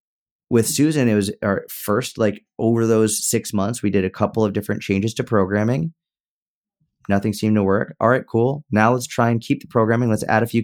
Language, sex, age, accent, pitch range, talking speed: English, male, 30-49, American, 100-125 Hz, 215 wpm